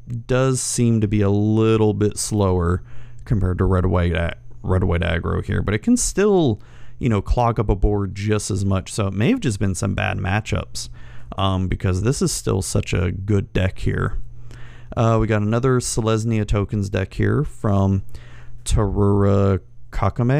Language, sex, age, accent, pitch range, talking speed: English, male, 30-49, American, 95-120 Hz, 175 wpm